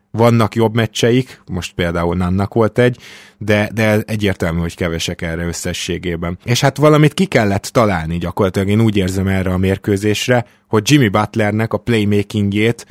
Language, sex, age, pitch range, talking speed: Hungarian, male, 20-39, 95-115 Hz, 155 wpm